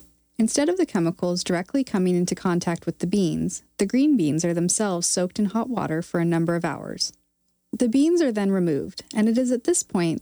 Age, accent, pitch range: 30-49, American, 160-220 Hz